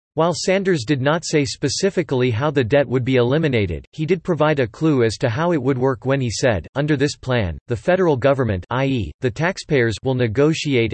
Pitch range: 120-150 Hz